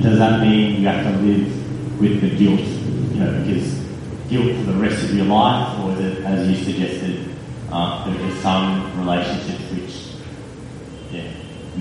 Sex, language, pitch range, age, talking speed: male, English, 100-150 Hz, 30-49, 165 wpm